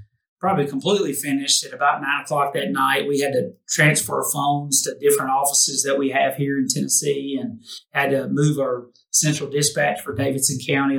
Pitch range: 130-150 Hz